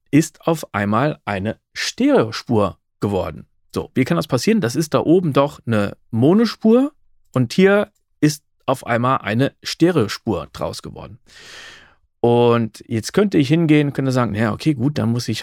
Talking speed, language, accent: 160 wpm, German, German